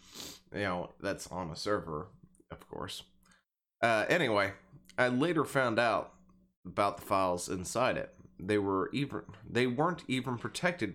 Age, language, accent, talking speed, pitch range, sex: 20-39, English, American, 155 wpm, 95-120 Hz, male